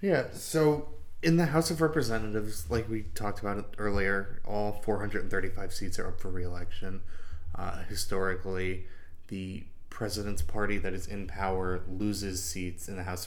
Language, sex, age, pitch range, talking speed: English, male, 20-39, 90-105 Hz, 165 wpm